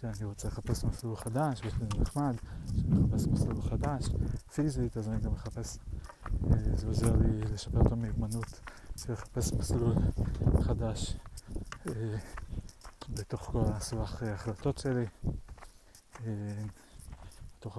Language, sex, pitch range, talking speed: Hebrew, male, 100-115 Hz, 105 wpm